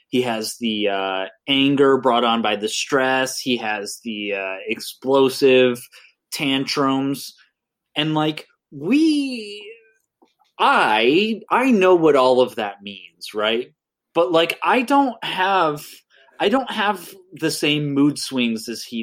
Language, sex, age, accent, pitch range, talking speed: English, male, 20-39, American, 125-195 Hz, 130 wpm